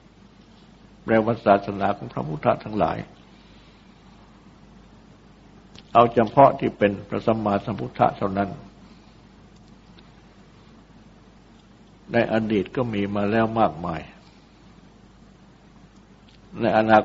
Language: Thai